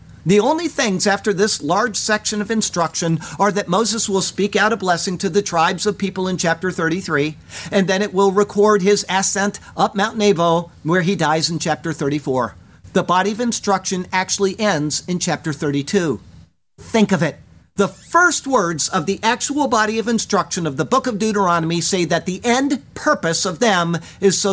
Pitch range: 170-215 Hz